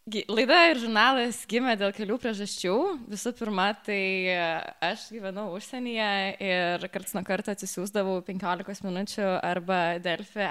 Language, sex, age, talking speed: English, female, 20-39, 125 wpm